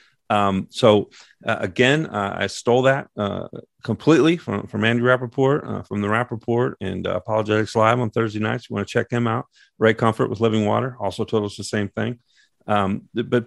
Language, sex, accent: English, male, American